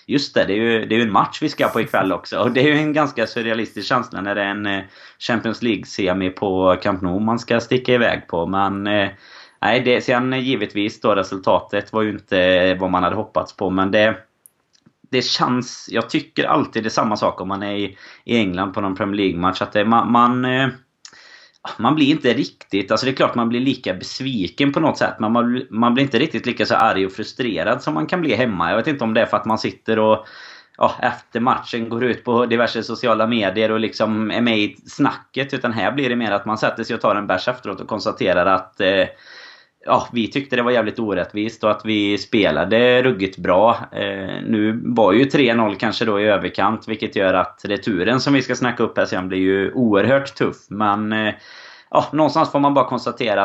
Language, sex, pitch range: Swedish, male, 100-120 Hz